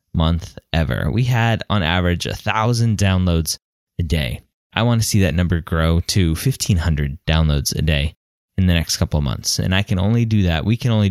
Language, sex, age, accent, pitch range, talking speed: English, male, 20-39, American, 85-115 Hz, 210 wpm